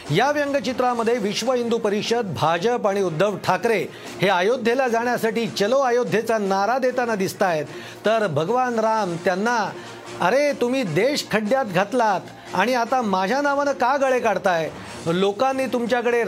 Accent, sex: native, male